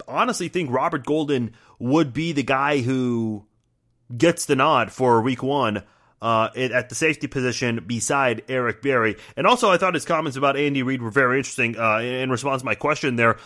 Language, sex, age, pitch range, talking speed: English, male, 30-49, 125-165 Hz, 190 wpm